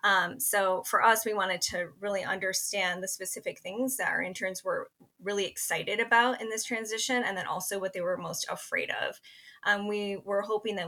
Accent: American